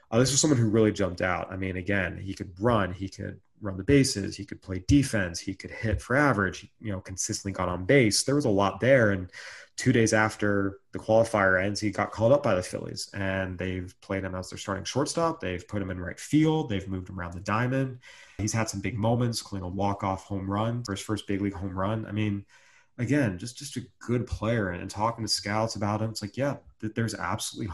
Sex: male